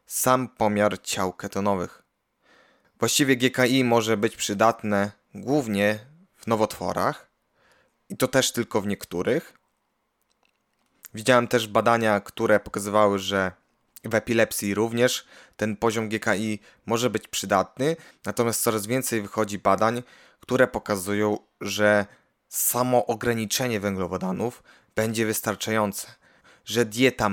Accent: native